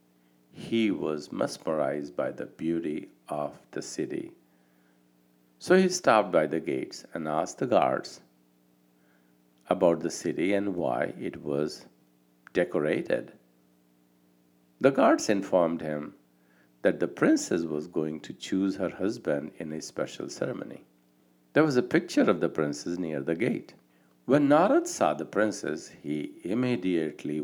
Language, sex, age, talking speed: English, male, 60-79, 135 wpm